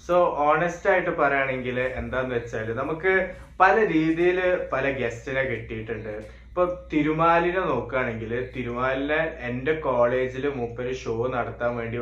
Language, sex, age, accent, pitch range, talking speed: Malayalam, male, 20-39, native, 120-150 Hz, 105 wpm